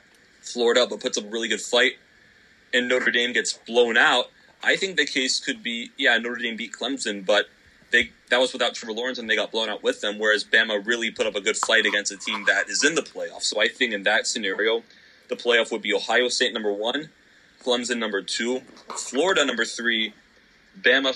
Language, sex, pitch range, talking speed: English, male, 105-130 Hz, 215 wpm